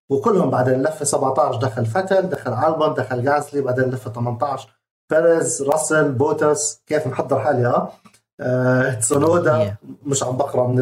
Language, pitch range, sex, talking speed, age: Arabic, 125-175 Hz, male, 140 wpm, 30-49